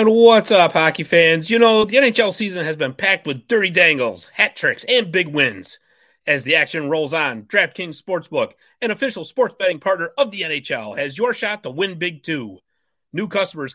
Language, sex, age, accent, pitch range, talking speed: English, male, 30-49, American, 170-235 Hz, 190 wpm